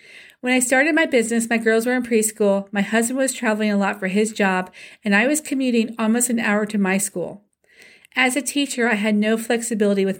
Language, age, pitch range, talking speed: English, 40-59, 200-250 Hz, 220 wpm